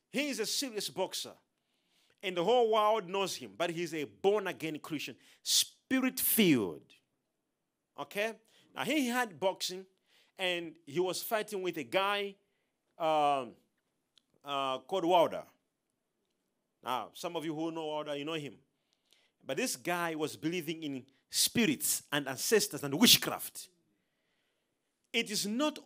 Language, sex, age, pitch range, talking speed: English, male, 40-59, 165-220 Hz, 130 wpm